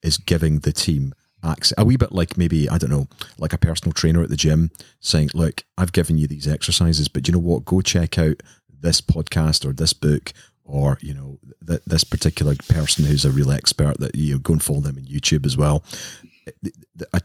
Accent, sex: British, male